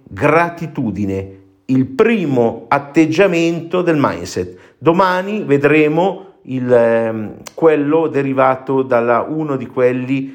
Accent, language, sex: native, Italian, male